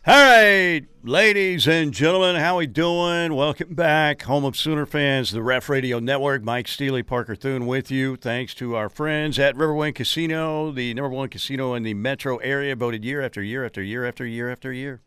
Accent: American